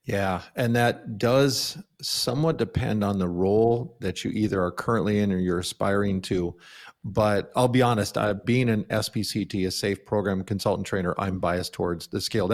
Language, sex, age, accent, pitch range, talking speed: English, male, 40-59, American, 100-120 Hz, 175 wpm